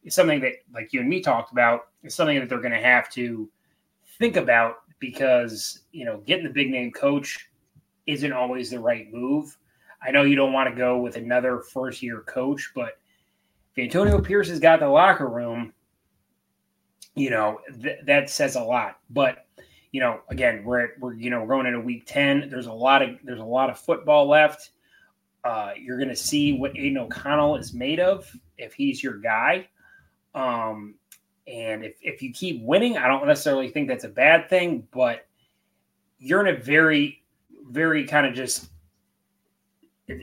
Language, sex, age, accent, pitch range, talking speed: English, male, 30-49, American, 125-160 Hz, 180 wpm